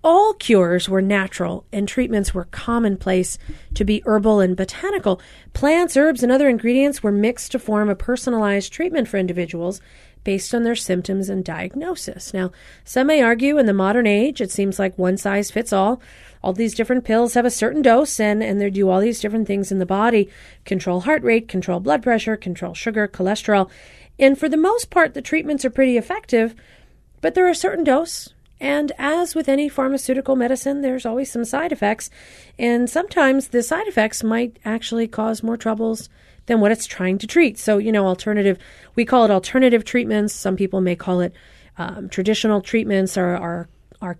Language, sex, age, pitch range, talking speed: English, female, 40-59, 200-265 Hz, 190 wpm